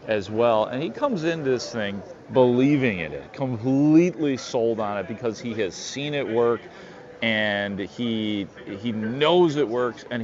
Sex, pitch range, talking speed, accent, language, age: male, 105-130 Hz, 165 wpm, American, English, 40-59